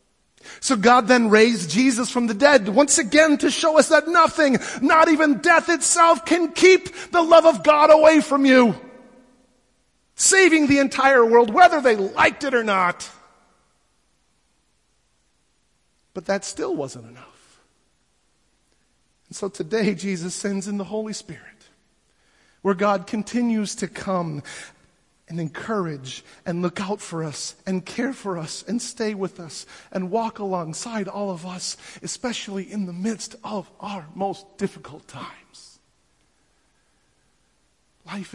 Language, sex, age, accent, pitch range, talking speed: English, male, 40-59, American, 175-250 Hz, 140 wpm